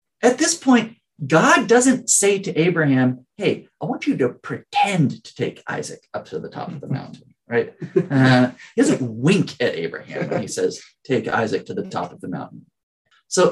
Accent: American